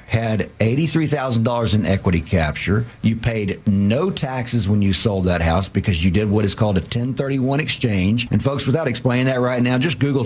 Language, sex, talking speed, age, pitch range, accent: English, male, 185 wpm, 50-69, 100-125 Hz, American